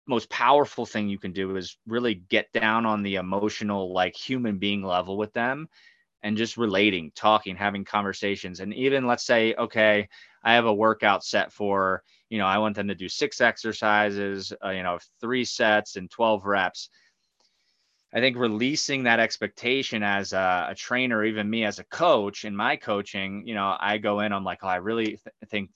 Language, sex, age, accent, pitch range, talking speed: English, male, 20-39, American, 100-115 Hz, 190 wpm